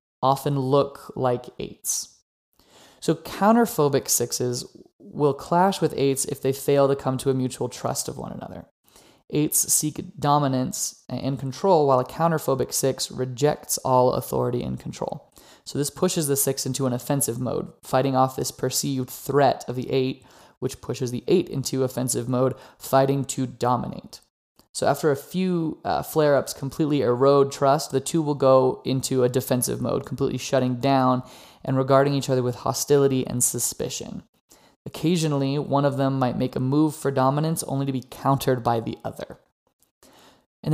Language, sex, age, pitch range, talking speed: English, male, 20-39, 130-145 Hz, 160 wpm